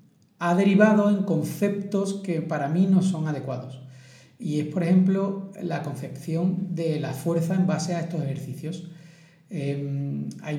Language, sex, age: Spanish, male, 40-59